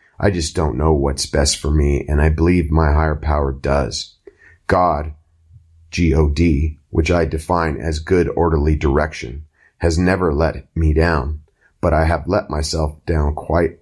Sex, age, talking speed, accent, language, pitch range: male, 30-49, 155 wpm, American, English, 80-90 Hz